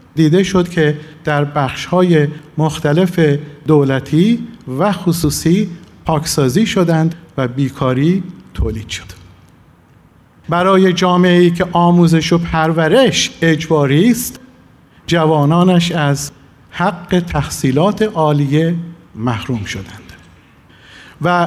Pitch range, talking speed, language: 150-180 Hz, 85 wpm, Persian